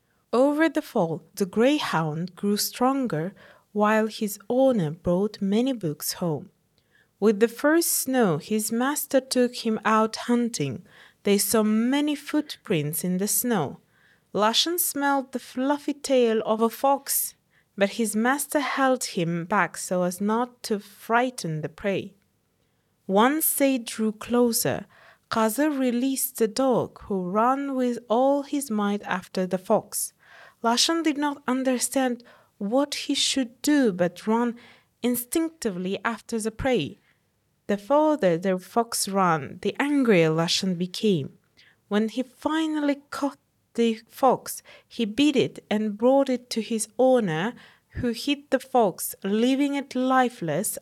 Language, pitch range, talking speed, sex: English, 195-260 Hz, 135 wpm, female